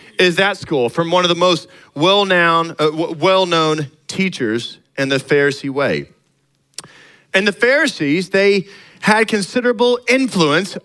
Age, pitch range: 40-59, 160-210 Hz